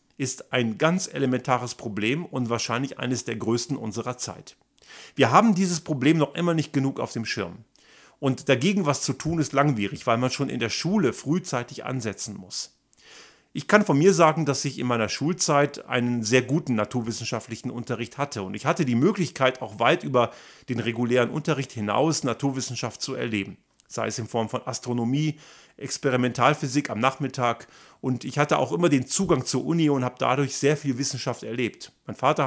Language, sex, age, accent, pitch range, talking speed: German, male, 40-59, German, 120-150 Hz, 180 wpm